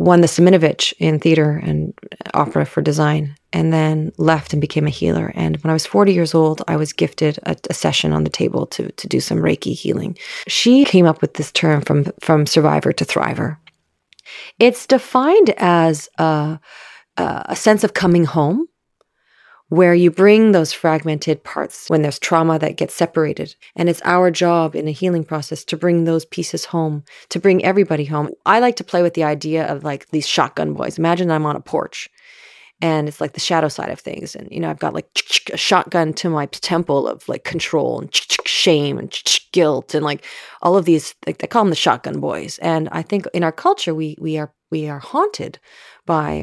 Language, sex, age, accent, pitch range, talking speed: English, female, 30-49, American, 155-185 Hz, 200 wpm